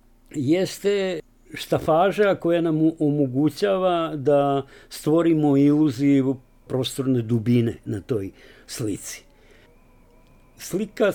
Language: Slovak